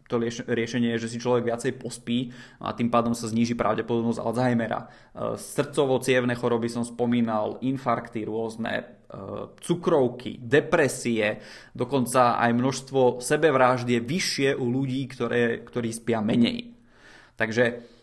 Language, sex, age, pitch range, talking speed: Czech, male, 20-39, 115-130 Hz, 125 wpm